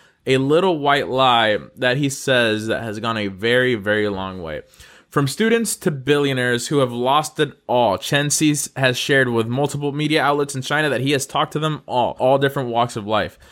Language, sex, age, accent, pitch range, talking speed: English, male, 20-39, American, 105-140 Hz, 205 wpm